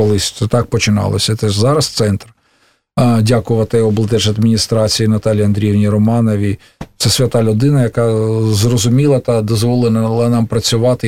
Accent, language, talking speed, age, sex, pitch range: native, Russian, 115 wpm, 50-69, male, 115-155 Hz